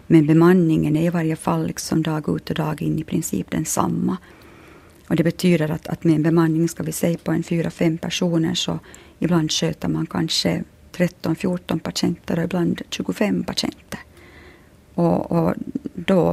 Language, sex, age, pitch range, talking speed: Finnish, female, 30-49, 155-175 Hz, 160 wpm